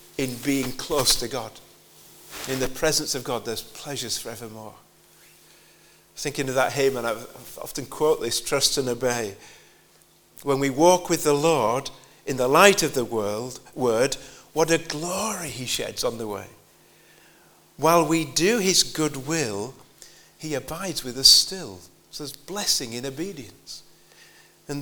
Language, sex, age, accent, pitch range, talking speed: English, male, 50-69, British, 130-175 Hz, 145 wpm